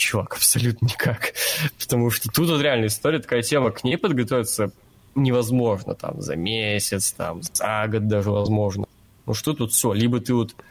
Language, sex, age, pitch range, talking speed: Russian, male, 20-39, 110-135 Hz, 170 wpm